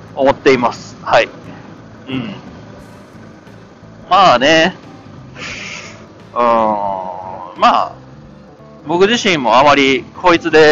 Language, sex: Japanese, male